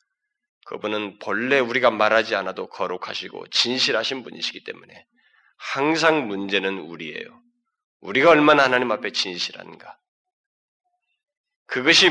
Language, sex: Korean, male